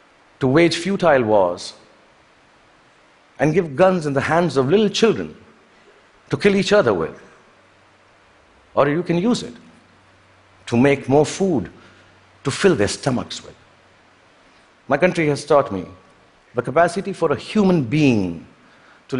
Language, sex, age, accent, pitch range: Chinese, male, 50-69, Indian, 115-170 Hz